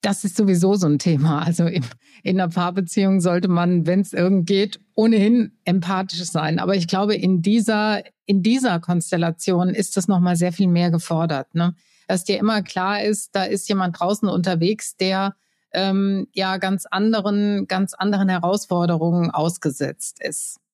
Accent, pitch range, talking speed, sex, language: German, 175-200 Hz, 160 wpm, female, German